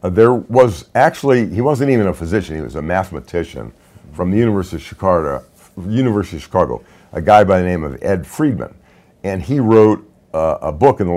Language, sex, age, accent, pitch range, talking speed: English, male, 50-69, American, 90-120 Hz, 185 wpm